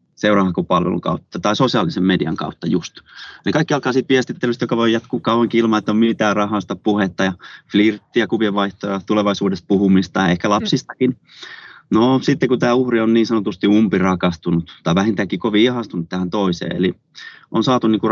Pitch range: 95-115 Hz